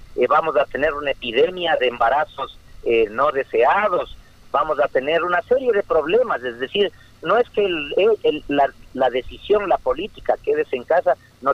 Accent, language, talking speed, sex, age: Mexican, Spanish, 180 wpm, male, 50-69